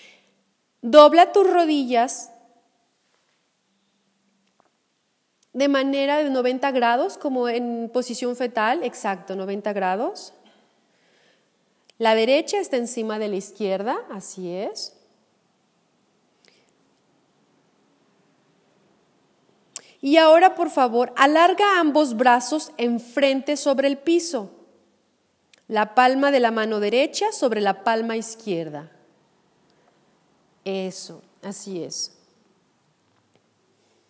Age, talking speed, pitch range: 30-49, 85 wpm, 220-305 Hz